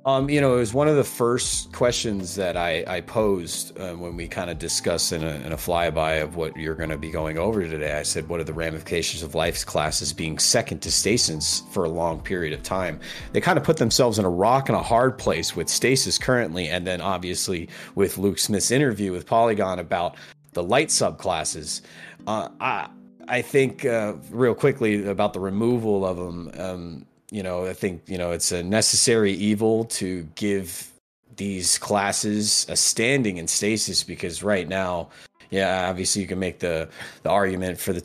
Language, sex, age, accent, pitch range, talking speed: English, male, 30-49, American, 85-100 Hz, 195 wpm